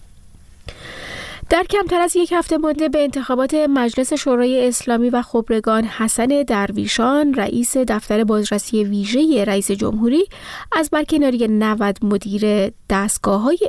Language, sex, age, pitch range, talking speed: Persian, female, 30-49, 210-280 Hz, 115 wpm